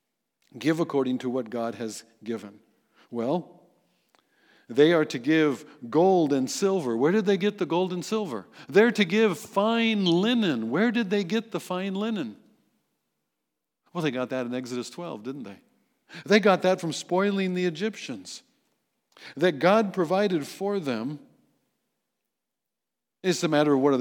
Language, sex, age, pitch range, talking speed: English, male, 50-69, 135-200 Hz, 155 wpm